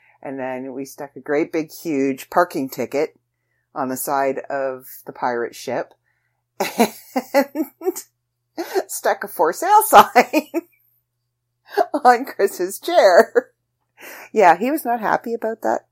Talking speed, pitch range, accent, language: 125 wpm, 120-200 Hz, American, English